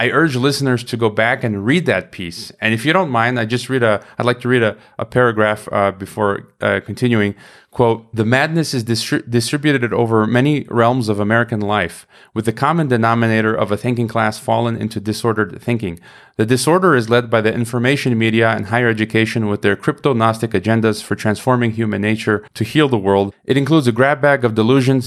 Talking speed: 200 wpm